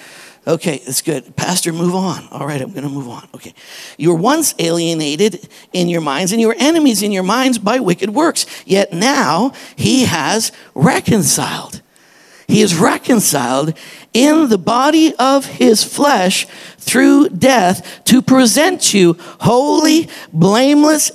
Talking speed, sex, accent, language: 150 wpm, male, American, English